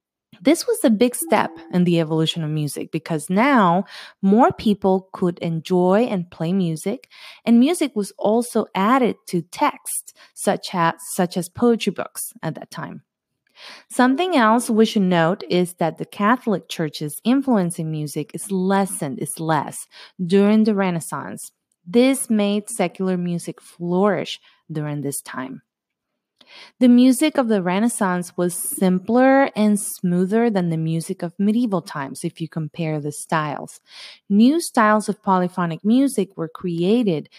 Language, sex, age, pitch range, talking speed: English, female, 30-49, 170-235 Hz, 145 wpm